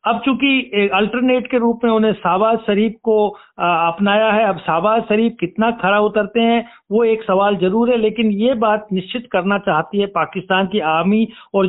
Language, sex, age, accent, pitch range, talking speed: Hindi, male, 60-79, native, 185-220 Hz, 180 wpm